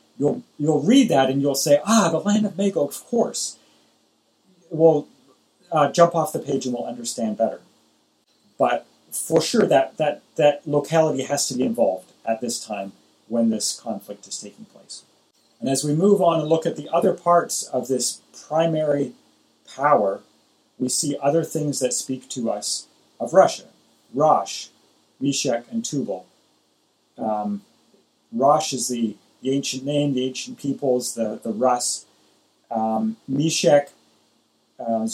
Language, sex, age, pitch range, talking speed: English, male, 40-59, 120-150 Hz, 150 wpm